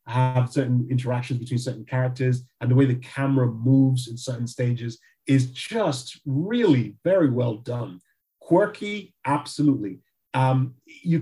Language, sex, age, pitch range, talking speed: English, male, 30-49, 125-155 Hz, 135 wpm